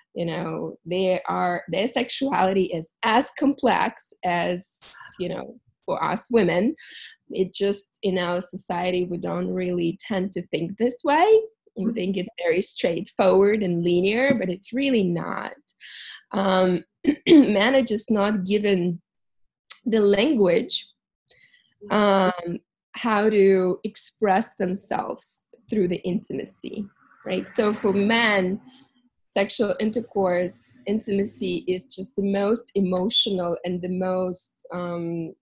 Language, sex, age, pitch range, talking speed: English, female, 20-39, 185-220 Hz, 120 wpm